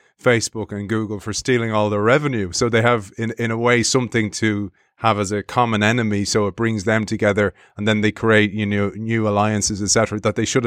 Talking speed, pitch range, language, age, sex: 220 wpm, 105-120 Hz, English, 30-49, male